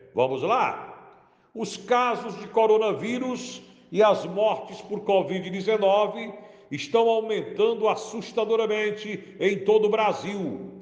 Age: 60-79